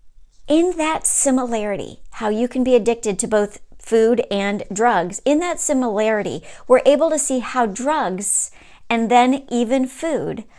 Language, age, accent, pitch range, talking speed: English, 40-59, American, 200-250 Hz, 145 wpm